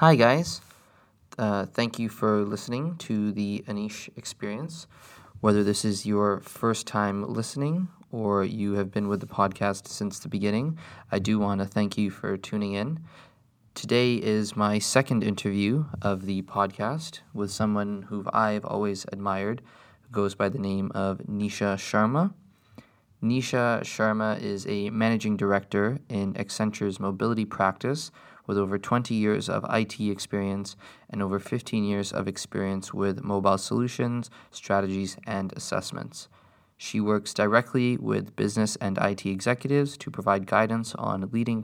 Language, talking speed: English, 145 wpm